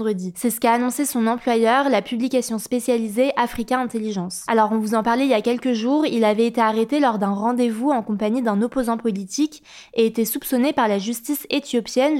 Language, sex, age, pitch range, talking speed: French, female, 20-39, 220-260 Hz, 195 wpm